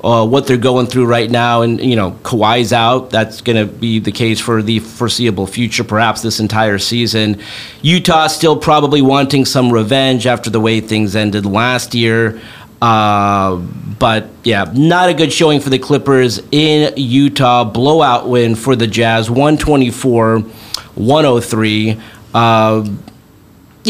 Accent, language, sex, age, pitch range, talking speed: American, English, male, 40-59, 115-140 Hz, 145 wpm